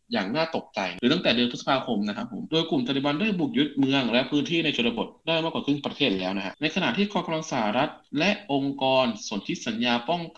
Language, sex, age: Thai, male, 20-39